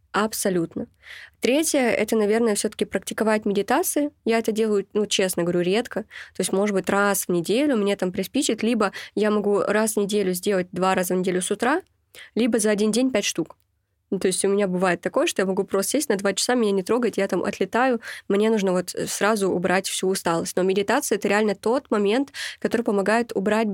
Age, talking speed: 20-39, 205 wpm